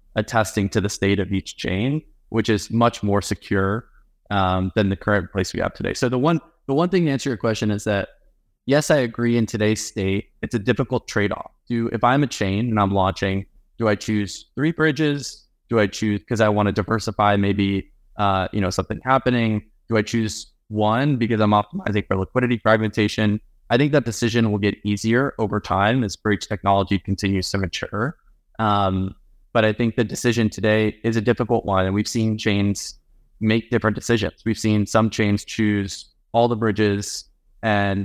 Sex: male